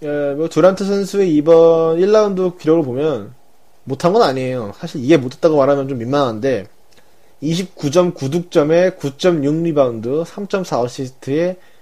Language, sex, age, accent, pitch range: Korean, male, 20-39, native, 140-190 Hz